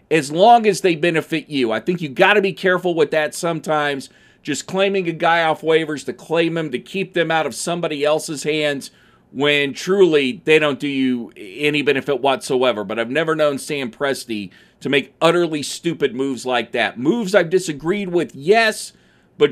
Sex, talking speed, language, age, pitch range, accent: male, 190 wpm, English, 40-59, 145-195 Hz, American